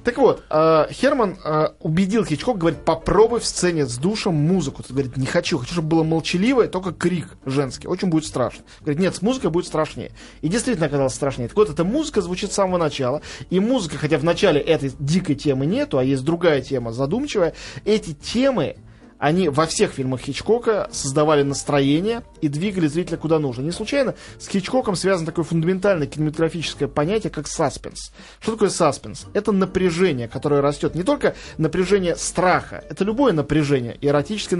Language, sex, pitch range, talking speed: Russian, male, 145-185 Hz, 175 wpm